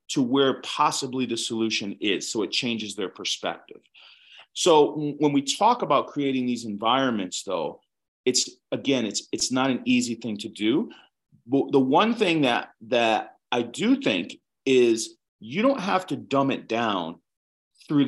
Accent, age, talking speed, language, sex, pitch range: American, 40-59, 160 wpm, Finnish, male, 120-180 Hz